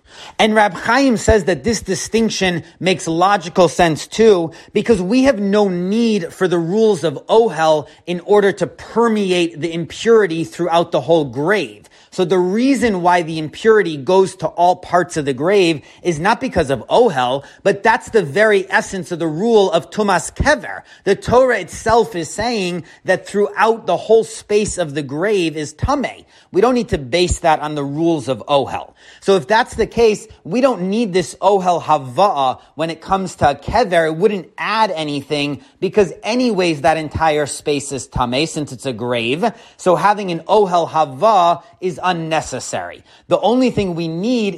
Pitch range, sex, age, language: 160-205 Hz, male, 30-49, English